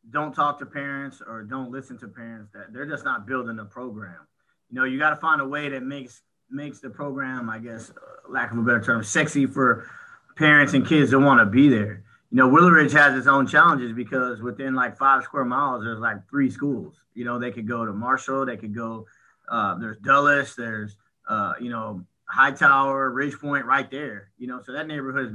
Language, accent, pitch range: English, American, 115-140 Hz